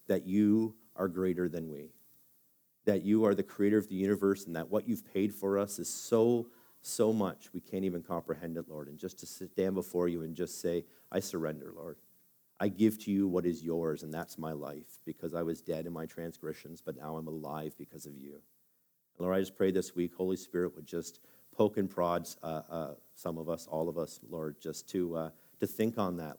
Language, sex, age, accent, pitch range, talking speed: English, male, 40-59, American, 80-95 Hz, 220 wpm